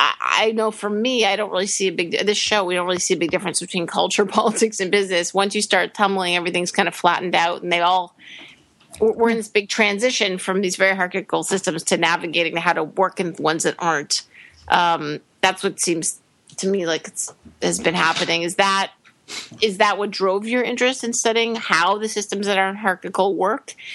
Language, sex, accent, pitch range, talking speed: English, female, American, 180-220 Hz, 215 wpm